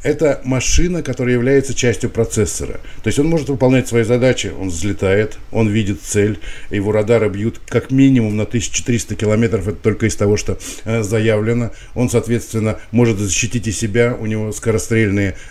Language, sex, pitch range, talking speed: Russian, male, 105-125 Hz, 165 wpm